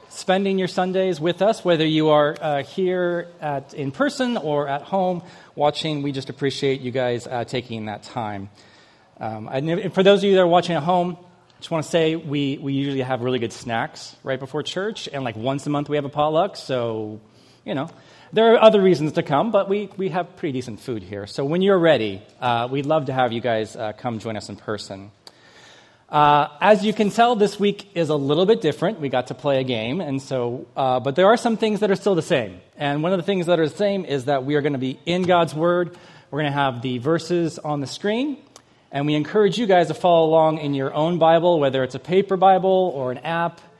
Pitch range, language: 130-180 Hz, English